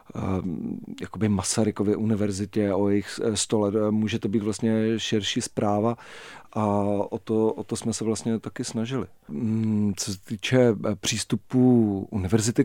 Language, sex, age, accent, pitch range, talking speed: Czech, male, 40-59, native, 105-115 Hz, 130 wpm